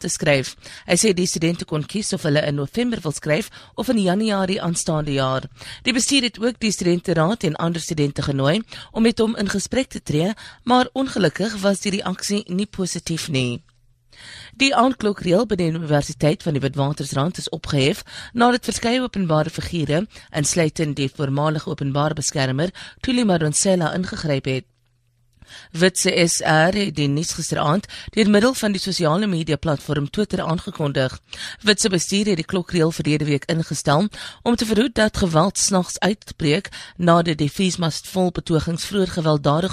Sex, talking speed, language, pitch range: female, 160 wpm, English, 150-200 Hz